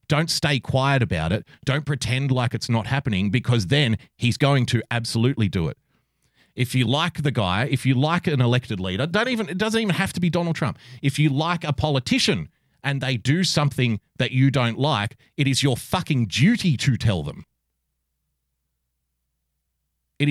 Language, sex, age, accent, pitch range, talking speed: English, male, 30-49, Australian, 105-145 Hz, 185 wpm